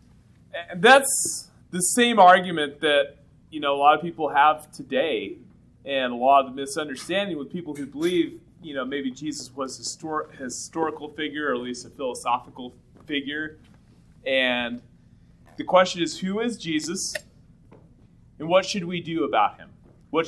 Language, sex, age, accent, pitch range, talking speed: English, male, 30-49, American, 135-200 Hz, 160 wpm